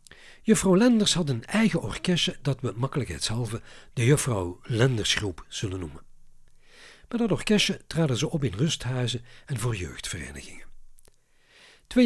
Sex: male